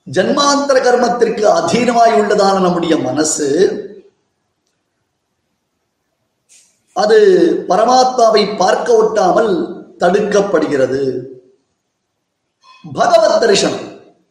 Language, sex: Tamil, male